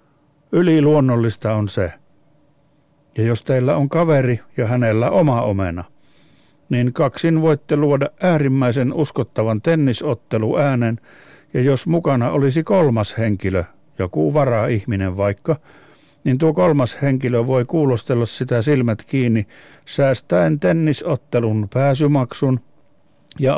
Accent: native